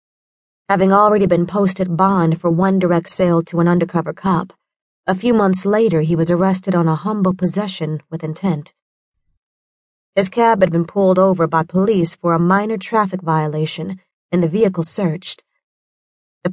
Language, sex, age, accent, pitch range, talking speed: English, female, 30-49, American, 165-195 Hz, 160 wpm